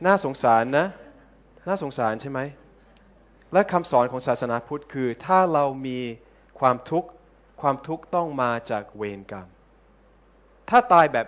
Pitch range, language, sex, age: 115-155 Hz, Thai, male, 20-39